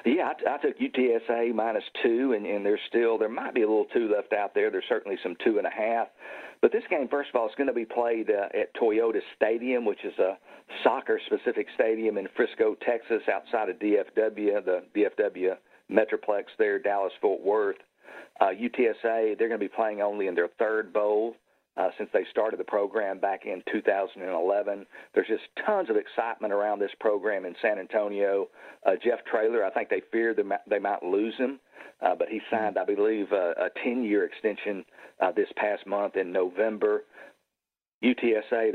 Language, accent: English, American